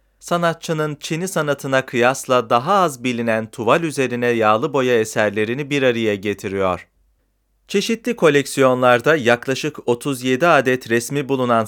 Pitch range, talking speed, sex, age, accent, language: 110-155 Hz, 115 wpm, male, 40-59, native, Turkish